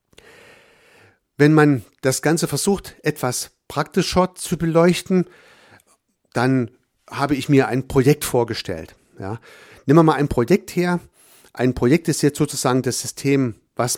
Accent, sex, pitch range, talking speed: German, male, 115-150 Hz, 130 wpm